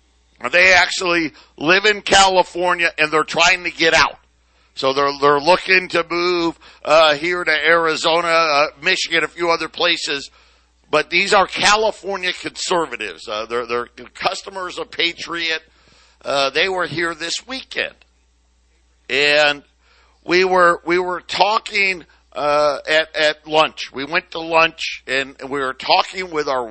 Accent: American